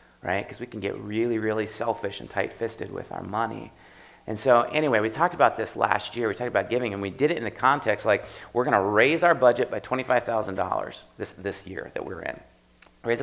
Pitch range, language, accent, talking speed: 95-115 Hz, English, American, 230 wpm